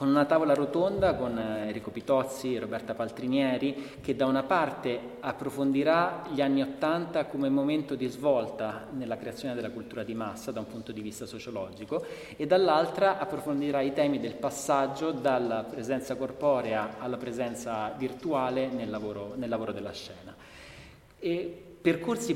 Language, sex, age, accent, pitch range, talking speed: Italian, male, 30-49, native, 120-160 Hz, 145 wpm